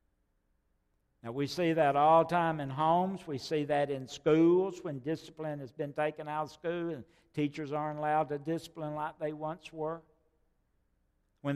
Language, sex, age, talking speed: English, male, 60-79, 170 wpm